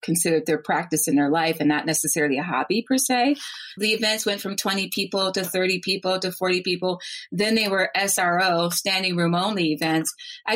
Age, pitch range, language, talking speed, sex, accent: 30-49, 175-225 Hz, English, 195 wpm, female, American